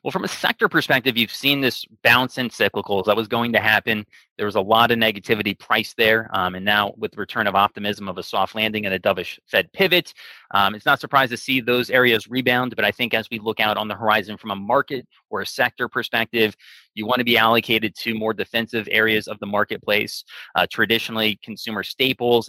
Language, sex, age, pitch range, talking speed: English, male, 20-39, 105-120 Hz, 220 wpm